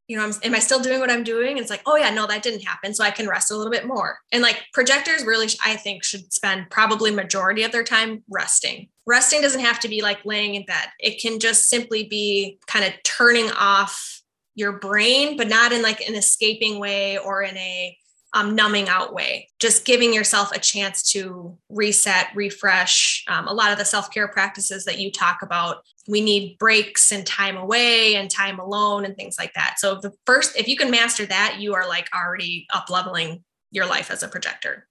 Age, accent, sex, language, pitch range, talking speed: 10-29, American, female, English, 200-240 Hz, 215 wpm